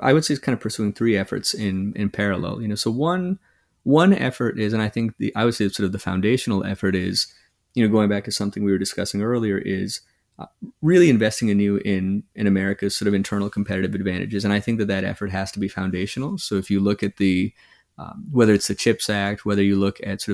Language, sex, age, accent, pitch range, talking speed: English, male, 30-49, American, 100-110 Hz, 245 wpm